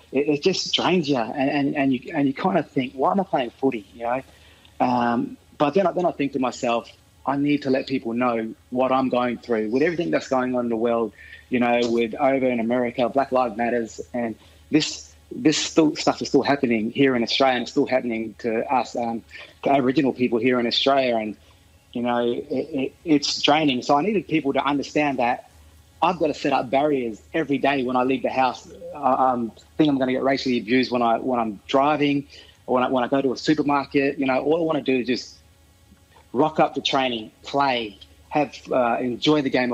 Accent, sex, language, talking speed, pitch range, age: Australian, male, English, 220 wpm, 115-140 Hz, 20-39